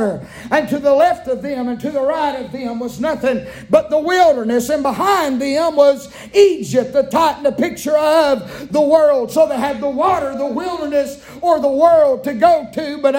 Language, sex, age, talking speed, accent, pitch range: English, male, 50-69, 190 wpm, American, 275-310 Hz